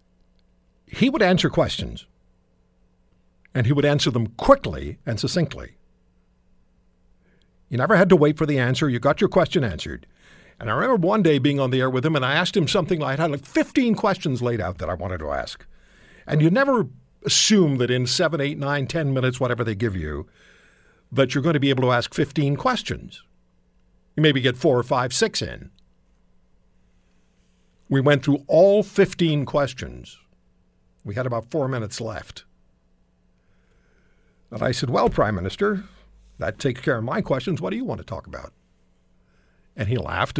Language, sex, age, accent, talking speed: English, male, 60-79, American, 180 wpm